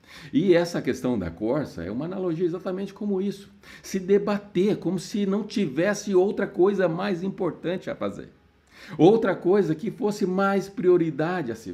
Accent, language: Brazilian, Portuguese